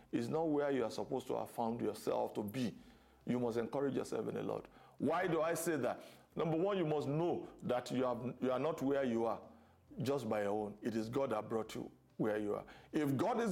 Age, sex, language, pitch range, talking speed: 50-69, male, English, 115-170 Hz, 240 wpm